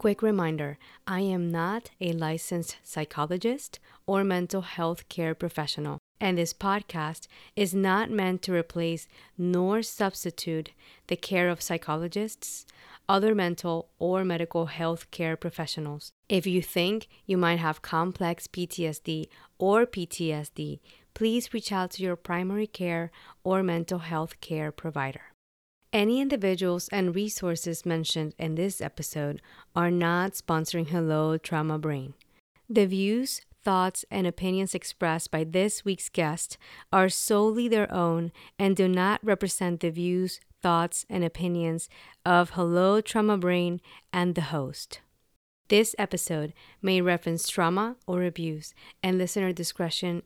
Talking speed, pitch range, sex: 130 wpm, 165-195 Hz, female